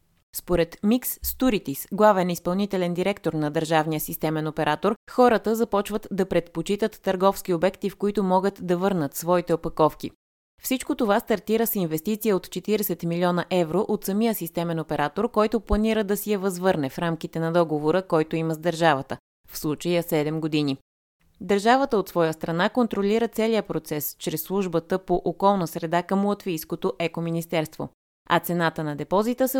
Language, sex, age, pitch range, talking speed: Bulgarian, female, 20-39, 165-210 Hz, 150 wpm